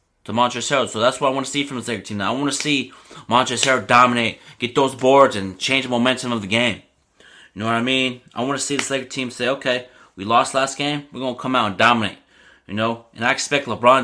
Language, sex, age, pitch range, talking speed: English, male, 20-39, 115-135 Hz, 260 wpm